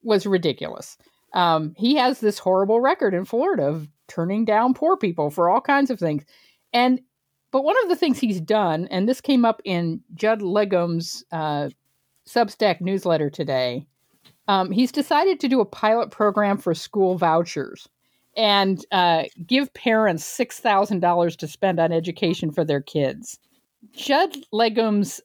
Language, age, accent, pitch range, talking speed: English, 50-69, American, 170-245 Hz, 150 wpm